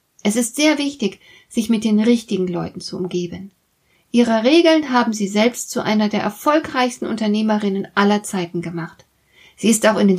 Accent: German